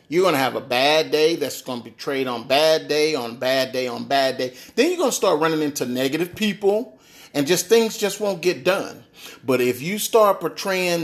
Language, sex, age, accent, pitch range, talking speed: English, male, 30-49, American, 140-205 Hz, 230 wpm